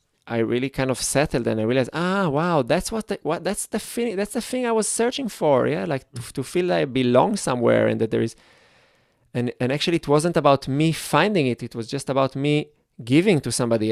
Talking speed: 235 wpm